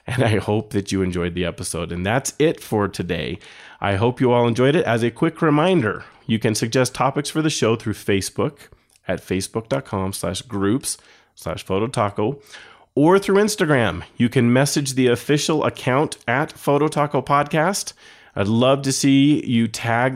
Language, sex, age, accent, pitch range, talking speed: English, male, 30-49, American, 100-140 Hz, 155 wpm